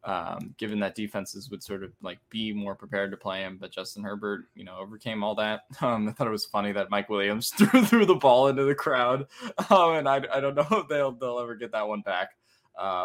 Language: English